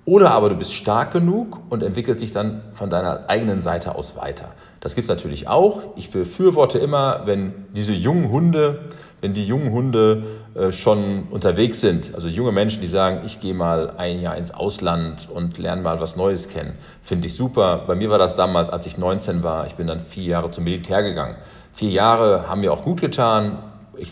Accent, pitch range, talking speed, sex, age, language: German, 85-115 Hz, 200 wpm, male, 40-59, German